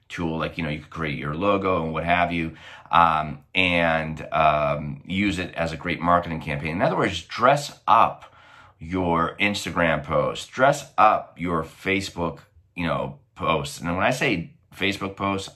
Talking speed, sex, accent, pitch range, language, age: 170 wpm, male, American, 80-95 Hz, English, 30-49